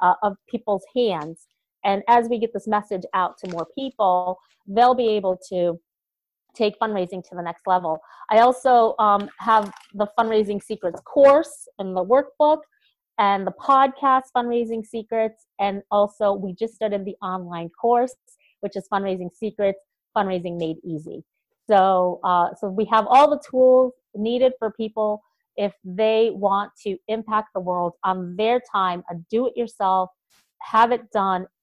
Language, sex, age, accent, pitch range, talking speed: English, female, 30-49, American, 185-230 Hz, 155 wpm